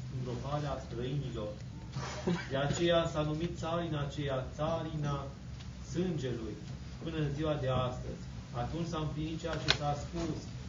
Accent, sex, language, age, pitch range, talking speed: native, male, Romanian, 30-49, 130-155 Hz, 125 wpm